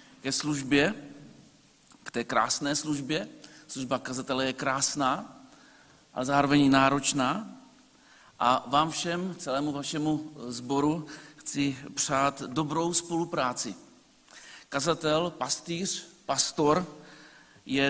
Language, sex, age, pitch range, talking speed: Czech, male, 40-59, 135-160 Hz, 90 wpm